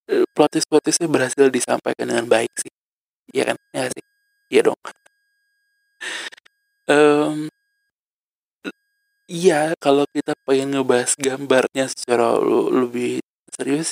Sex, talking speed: male, 100 wpm